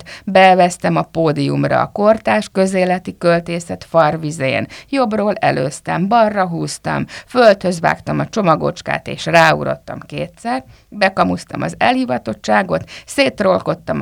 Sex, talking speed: female, 100 wpm